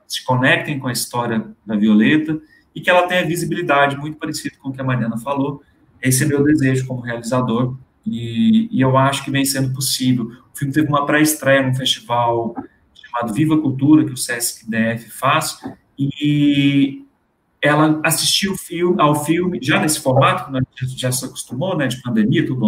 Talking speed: 175 wpm